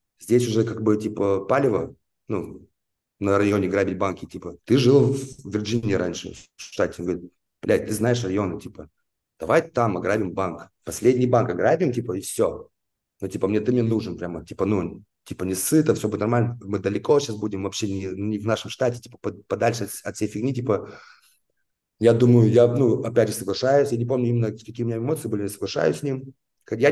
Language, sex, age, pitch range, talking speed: Russian, male, 30-49, 95-120 Hz, 195 wpm